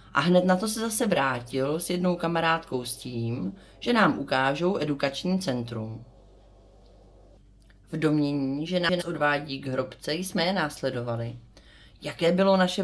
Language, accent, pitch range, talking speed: Czech, native, 120-180 Hz, 140 wpm